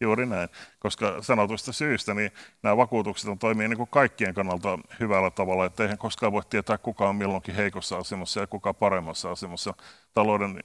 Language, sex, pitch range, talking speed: Finnish, male, 95-110 Hz, 165 wpm